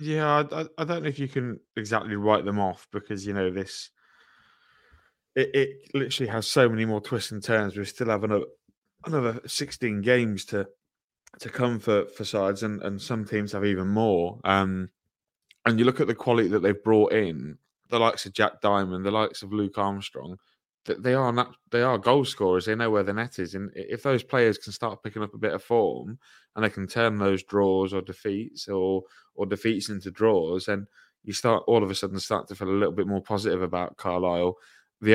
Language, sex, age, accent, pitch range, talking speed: English, male, 20-39, British, 95-110 Hz, 210 wpm